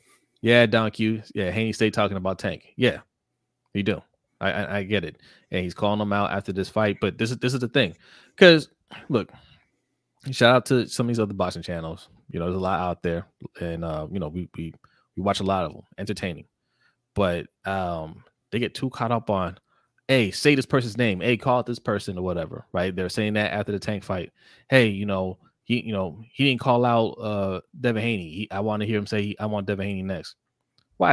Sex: male